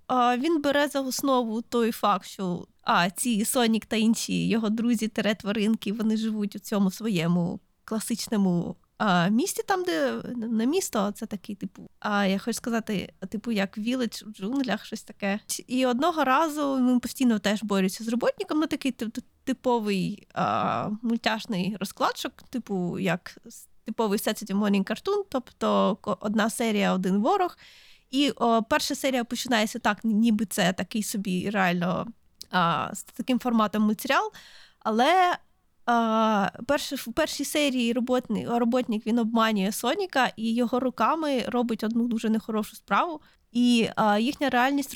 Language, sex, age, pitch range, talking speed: Ukrainian, female, 20-39, 210-255 Hz, 145 wpm